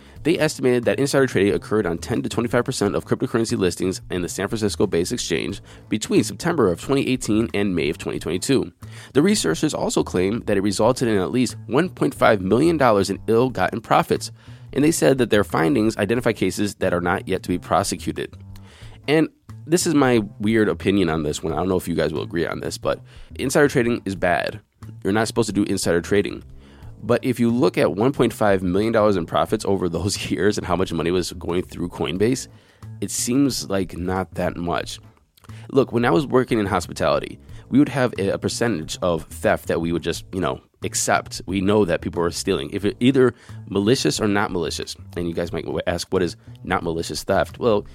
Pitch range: 90-115 Hz